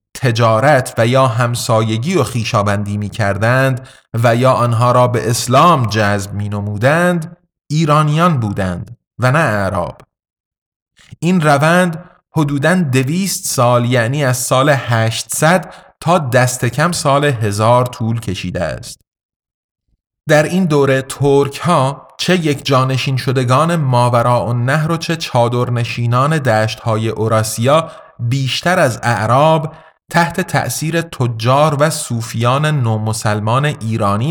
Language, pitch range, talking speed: Persian, 115-150 Hz, 115 wpm